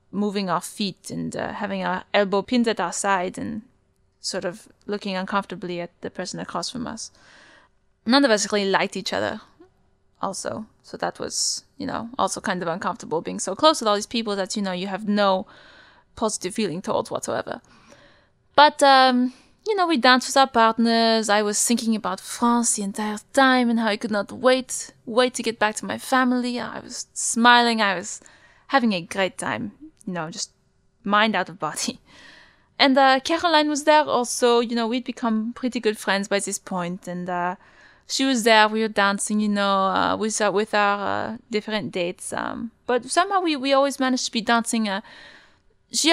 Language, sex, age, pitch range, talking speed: English, female, 20-39, 200-250 Hz, 195 wpm